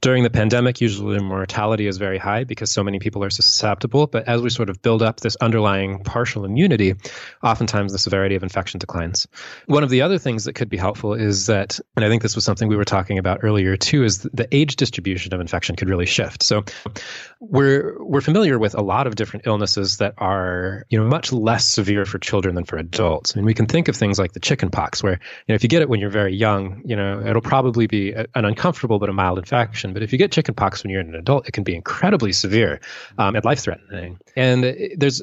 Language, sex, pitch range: English, male, 100-120 Hz